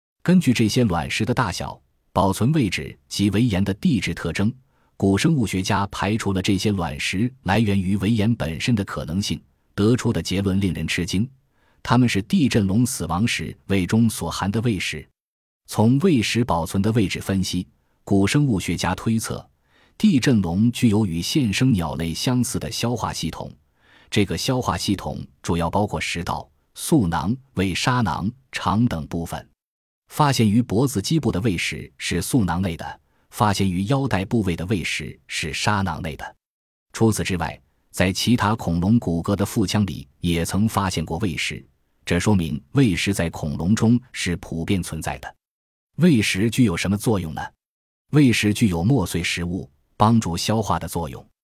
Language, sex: Chinese, male